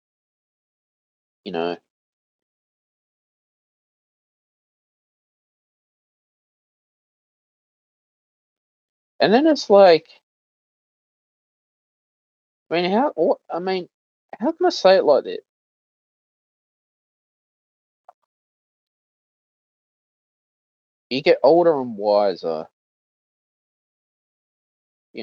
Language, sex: English, male